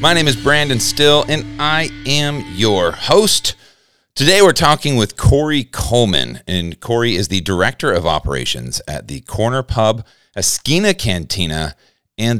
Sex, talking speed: male, 145 wpm